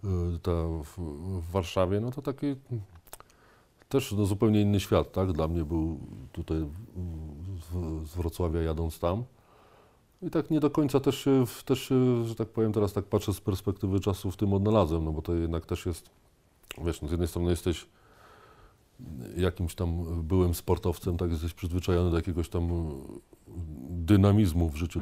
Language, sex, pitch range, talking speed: Polish, male, 85-100 Hz, 155 wpm